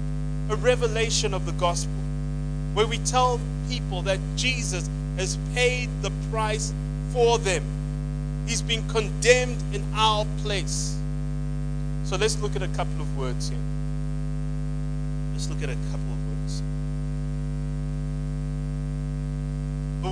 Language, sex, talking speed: English, male, 120 wpm